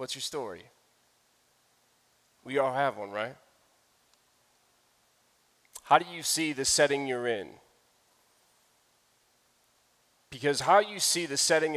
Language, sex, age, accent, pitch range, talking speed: English, male, 30-49, American, 125-150 Hz, 110 wpm